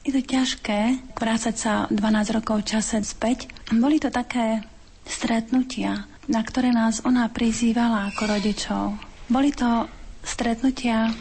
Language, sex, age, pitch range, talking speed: Slovak, female, 30-49, 210-235 Hz, 125 wpm